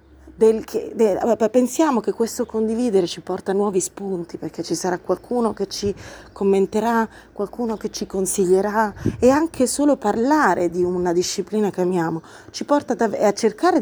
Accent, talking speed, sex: native, 160 wpm, female